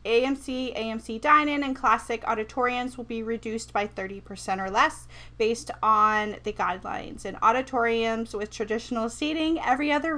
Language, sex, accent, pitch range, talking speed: English, female, American, 210-265 Hz, 145 wpm